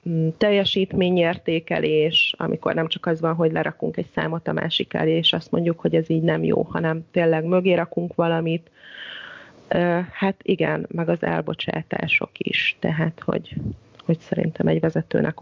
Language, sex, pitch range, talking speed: Hungarian, female, 160-185 Hz, 150 wpm